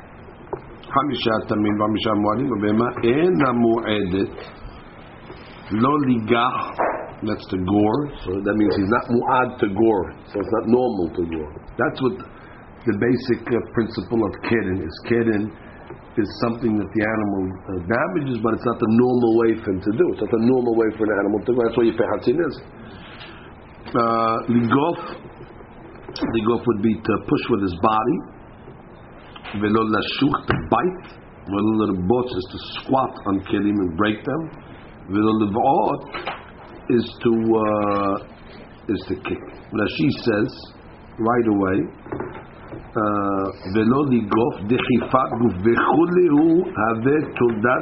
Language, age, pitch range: English, 50-69, 105-120 Hz